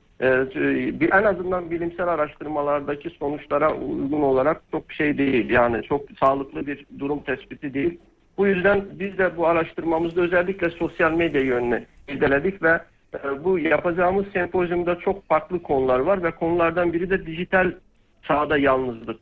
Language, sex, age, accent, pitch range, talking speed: Turkish, male, 60-79, native, 135-170 Hz, 135 wpm